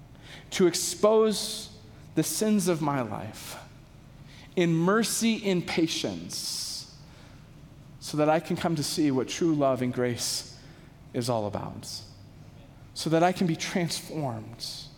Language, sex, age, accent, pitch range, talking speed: English, male, 40-59, American, 145-220 Hz, 130 wpm